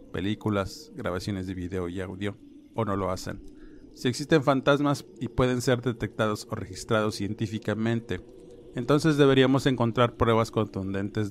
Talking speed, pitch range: 135 wpm, 105-125 Hz